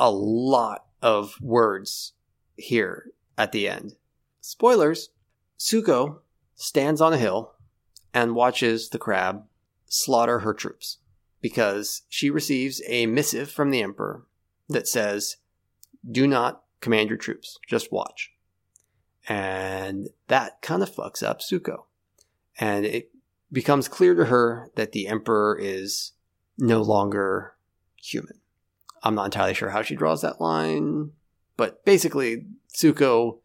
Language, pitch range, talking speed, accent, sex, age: English, 100-135 Hz, 125 wpm, American, male, 30-49